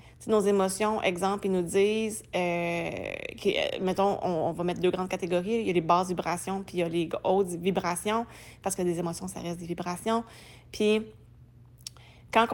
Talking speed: 190 wpm